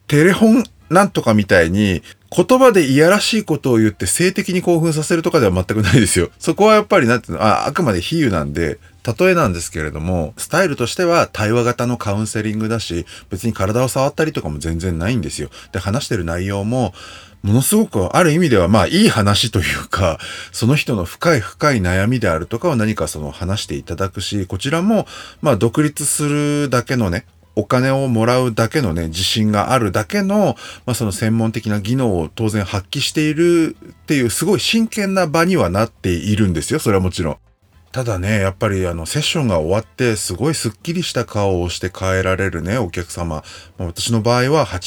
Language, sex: Japanese, male